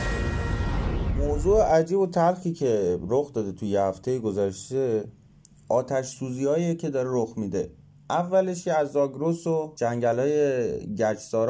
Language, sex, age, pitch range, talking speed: Persian, male, 30-49, 115-150 Hz, 125 wpm